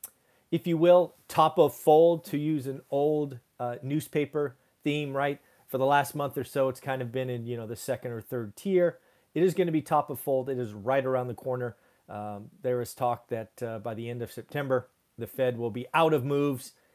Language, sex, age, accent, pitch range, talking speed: English, male, 40-59, American, 130-175 Hz, 225 wpm